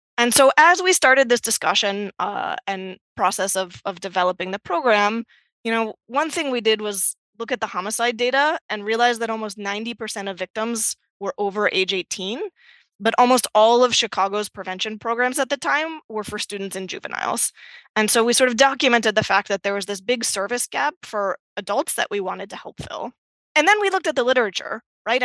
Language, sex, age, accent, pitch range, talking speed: English, female, 20-39, American, 195-250 Hz, 200 wpm